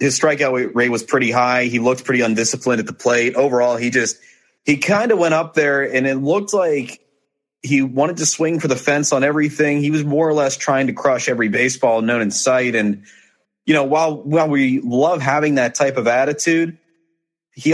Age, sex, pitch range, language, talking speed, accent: 30-49, male, 115-145 Hz, English, 205 wpm, American